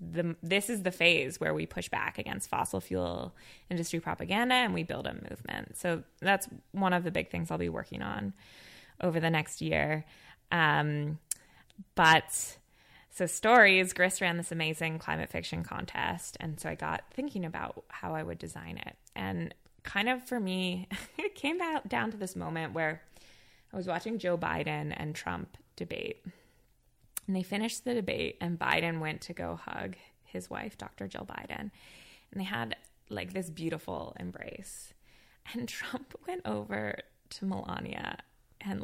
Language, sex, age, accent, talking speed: English, female, 20-39, American, 160 wpm